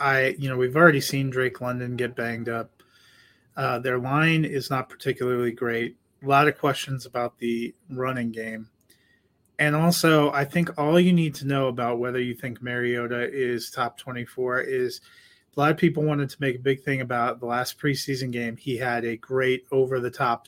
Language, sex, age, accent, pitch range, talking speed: English, male, 30-49, American, 120-140 Hz, 190 wpm